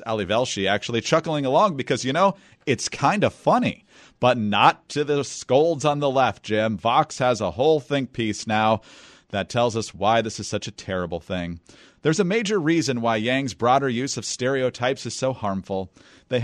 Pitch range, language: 110-155 Hz, English